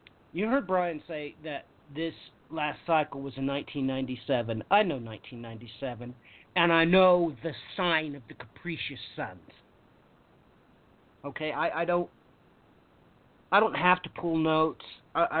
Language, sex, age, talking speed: English, male, 40-59, 130 wpm